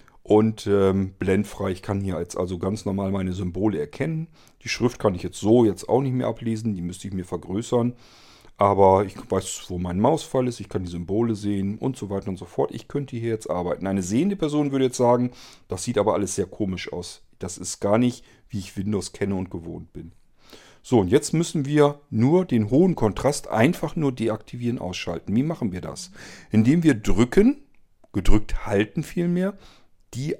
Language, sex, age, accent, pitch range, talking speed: German, male, 40-59, German, 95-125 Hz, 195 wpm